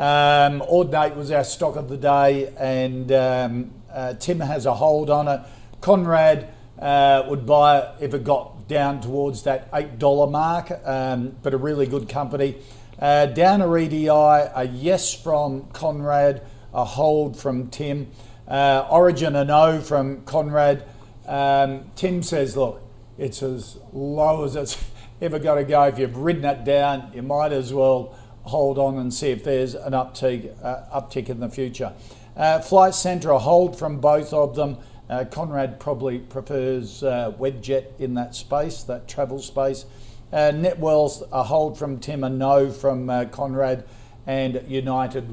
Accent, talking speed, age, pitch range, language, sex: Australian, 160 wpm, 50-69, 125-145 Hz, English, male